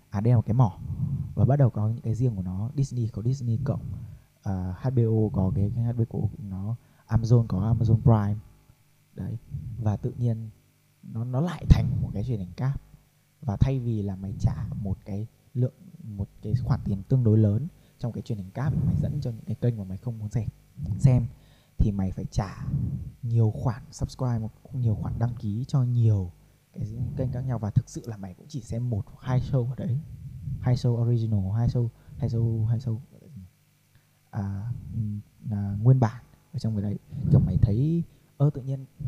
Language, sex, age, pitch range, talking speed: Vietnamese, male, 20-39, 110-135 Hz, 195 wpm